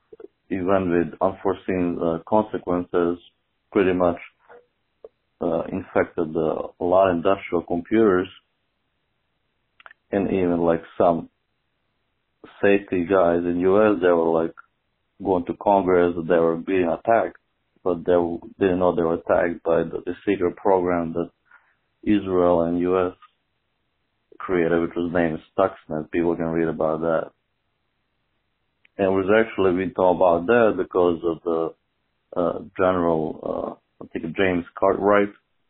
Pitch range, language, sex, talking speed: 85-95 Hz, English, male, 130 wpm